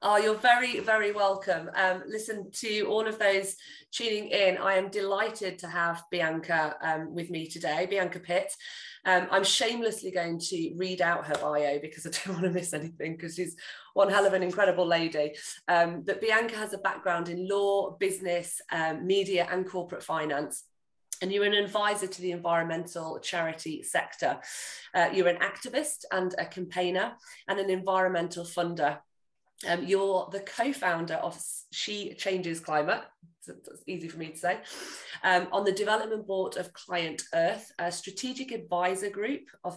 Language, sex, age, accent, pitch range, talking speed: English, female, 30-49, British, 170-200 Hz, 165 wpm